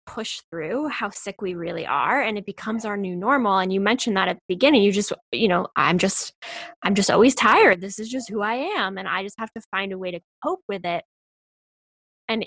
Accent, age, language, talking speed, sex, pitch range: American, 10-29, English, 235 wpm, female, 185-225 Hz